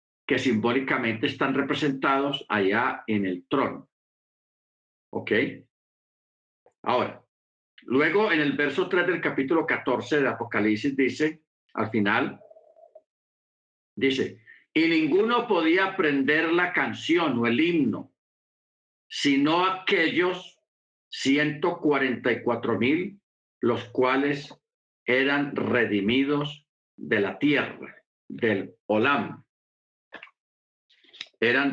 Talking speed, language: 90 wpm, Spanish